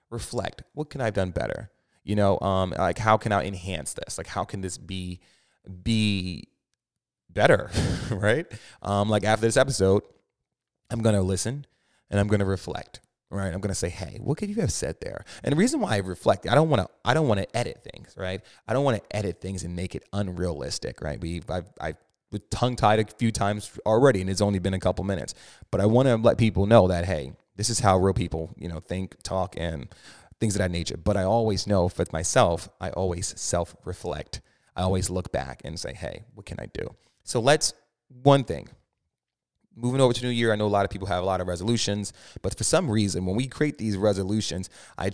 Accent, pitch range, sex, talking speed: American, 90-115 Hz, male, 225 wpm